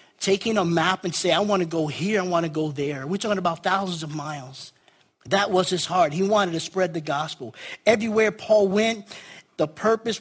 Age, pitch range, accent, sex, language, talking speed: 50-69, 155-200 Hz, American, male, English, 210 wpm